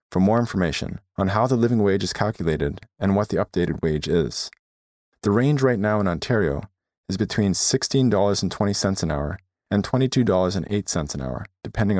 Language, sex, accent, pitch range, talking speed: English, male, American, 90-130 Hz, 160 wpm